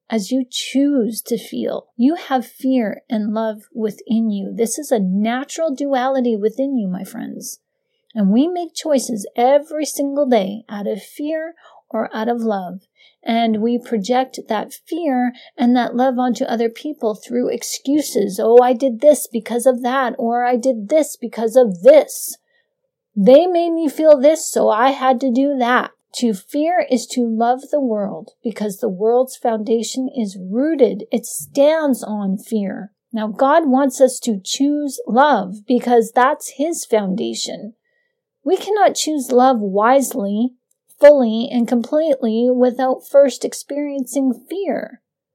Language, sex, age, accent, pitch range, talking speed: English, female, 40-59, American, 225-285 Hz, 150 wpm